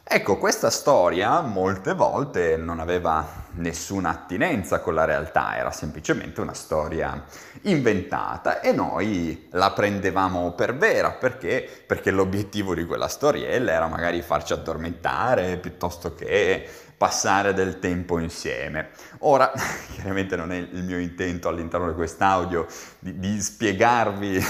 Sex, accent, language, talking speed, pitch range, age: male, native, Italian, 125 wpm, 90-145 Hz, 30-49